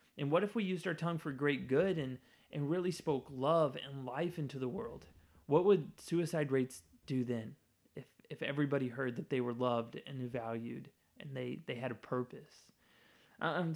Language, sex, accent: English, male, American